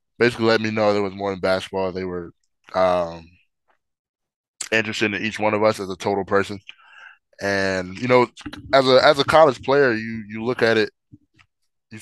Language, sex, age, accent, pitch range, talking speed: English, male, 10-29, American, 90-100 Hz, 185 wpm